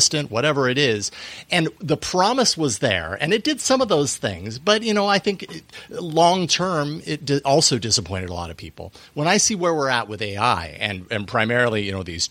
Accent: American